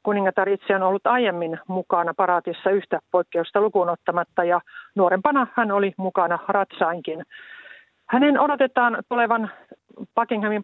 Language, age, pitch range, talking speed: Finnish, 50-69, 180-220 Hz, 115 wpm